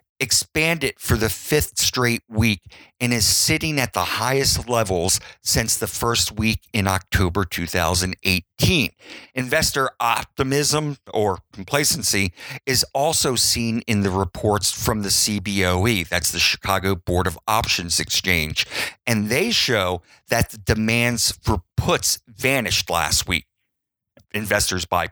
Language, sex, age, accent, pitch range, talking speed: English, male, 50-69, American, 95-120 Hz, 125 wpm